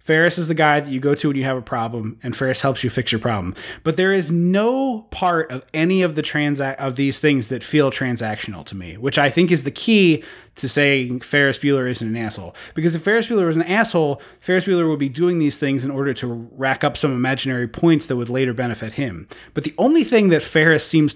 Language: English